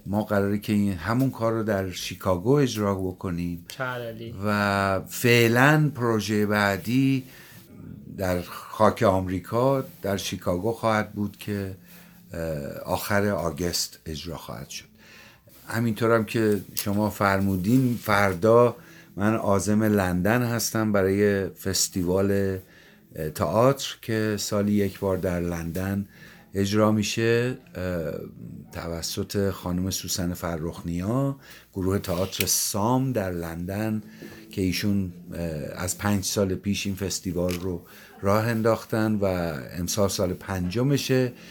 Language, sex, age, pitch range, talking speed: Persian, male, 60-79, 95-115 Hz, 105 wpm